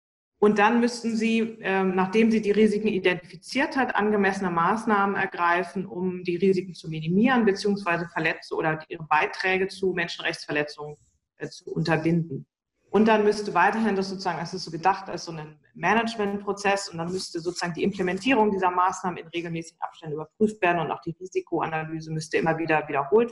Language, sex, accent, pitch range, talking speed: German, female, German, 165-200 Hz, 160 wpm